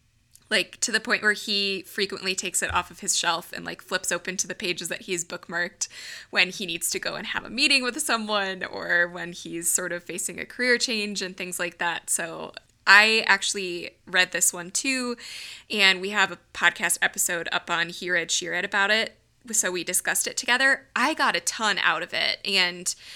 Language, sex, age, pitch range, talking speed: English, female, 20-39, 180-215 Hz, 210 wpm